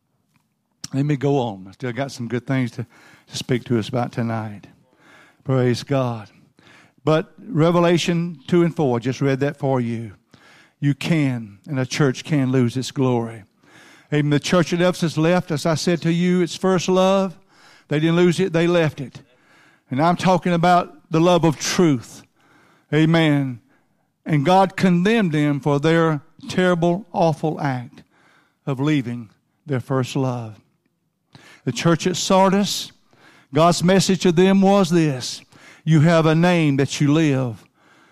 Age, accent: 50-69, American